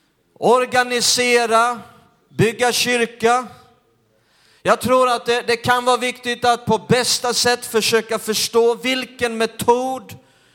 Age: 40-59